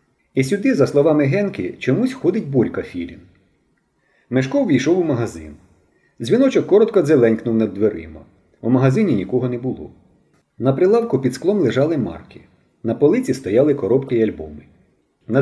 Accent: native